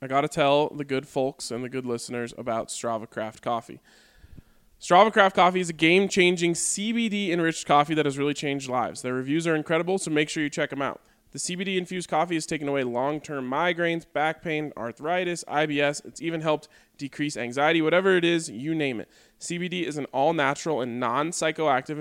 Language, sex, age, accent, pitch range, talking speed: English, male, 20-39, American, 130-165 Hz, 185 wpm